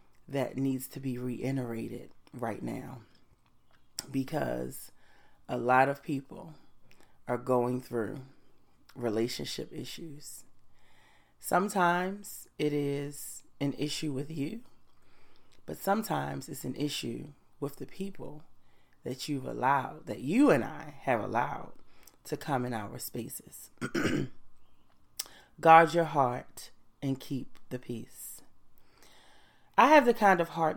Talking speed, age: 115 wpm, 30-49